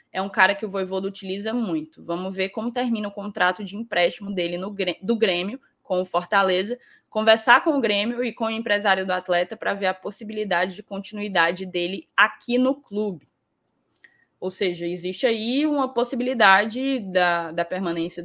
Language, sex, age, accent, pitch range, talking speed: Portuguese, female, 10-29, Brazilian, 190-235 Hz, 170 wpm